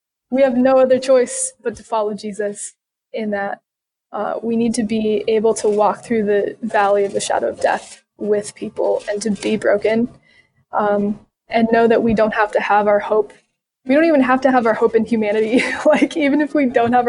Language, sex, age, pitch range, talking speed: English, female, 20-39, 210-255 Hz, 210 wpm